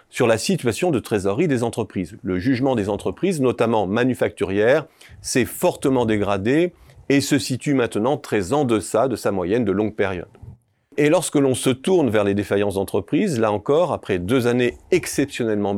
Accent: French